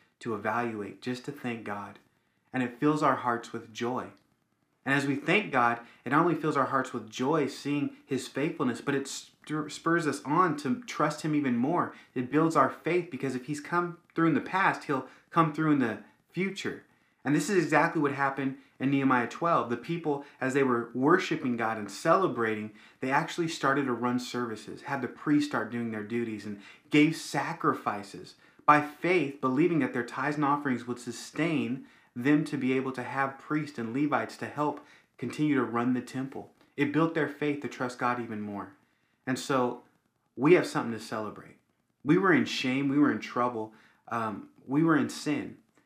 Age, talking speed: 30-49, 190 wpm